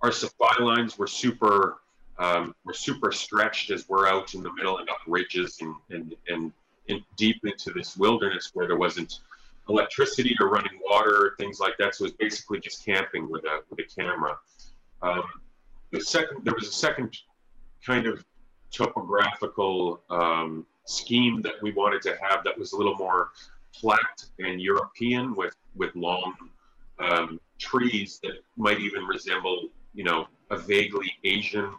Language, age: English, 30-49